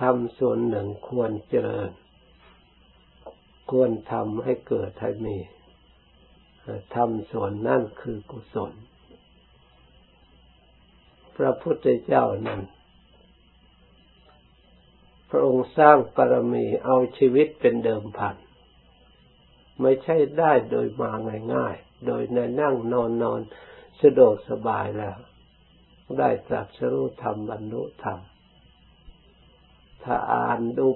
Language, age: Thai, 60-79